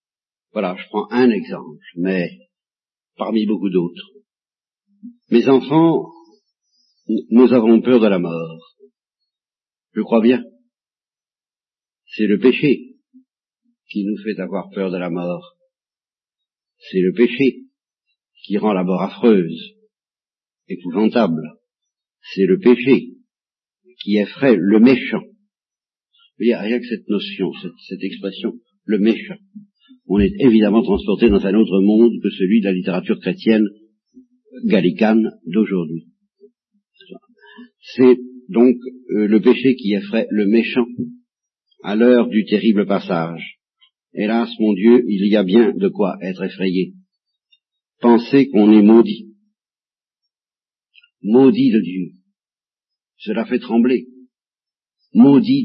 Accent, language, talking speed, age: French, French, 120 wpm, 60-79